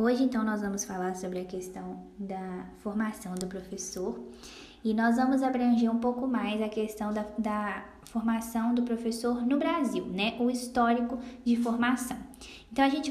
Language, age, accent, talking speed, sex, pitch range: Portuguese, 10-29, Brazilian, 165 wpm, female, 215-250 Hz